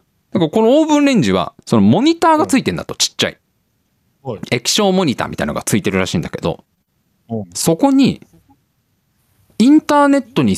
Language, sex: Japanese, male